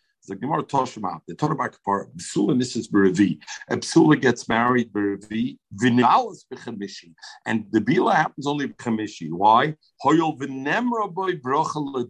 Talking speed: 120 wpm